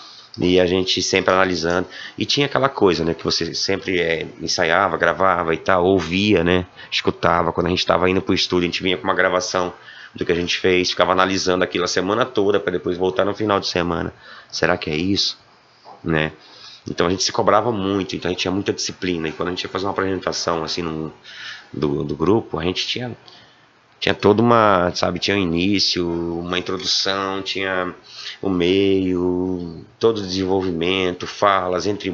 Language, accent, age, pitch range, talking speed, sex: Portuguese, Brazilian, 30-49, 90-100 Hz, 190 wpm, male